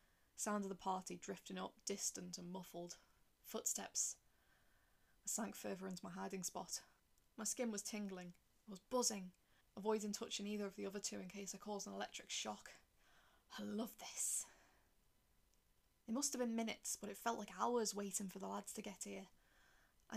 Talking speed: 170 wpm